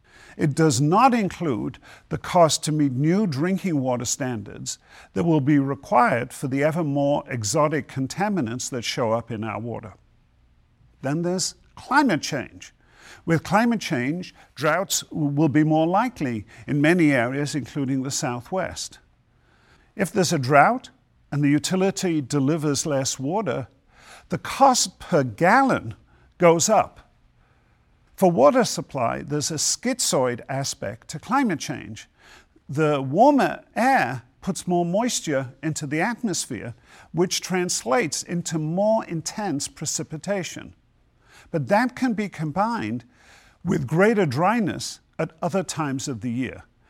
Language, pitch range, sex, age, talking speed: English, 140-185 Hz, male, 50-69, 130 wpm